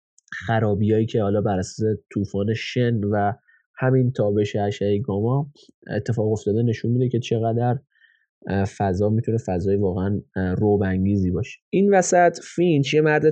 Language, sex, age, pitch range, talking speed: Persian, male, 20-39, 105-130 Hz, 125 wpm